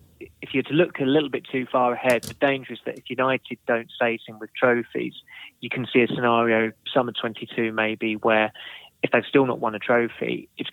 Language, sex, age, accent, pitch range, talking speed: English, male, 20-39, British, 110-120 Hz, 215 wpm